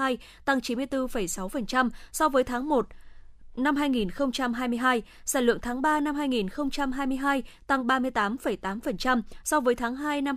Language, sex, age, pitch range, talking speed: Vietnamese, female, 20-39, 220-280 Hz, 120 wpm